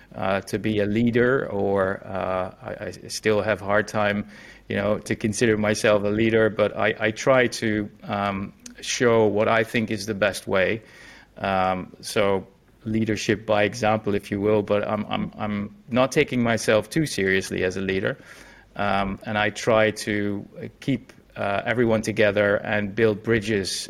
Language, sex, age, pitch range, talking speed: English, male, 30-49, 100-115 Hz, 170 wpm